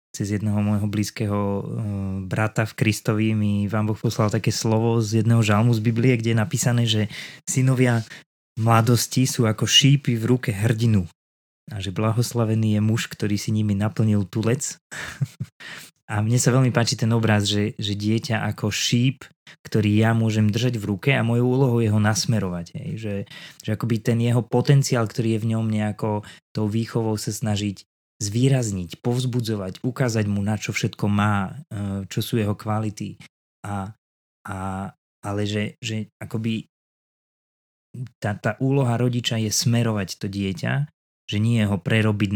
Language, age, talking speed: Slovak, 20-39, 155 wpm